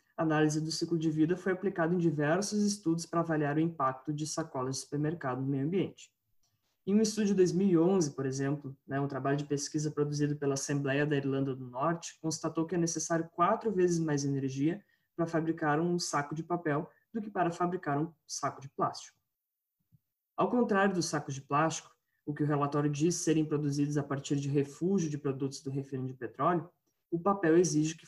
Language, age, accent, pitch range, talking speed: Portuguese, 20-39, Brazilian, 145-175 Hz, 190 wpm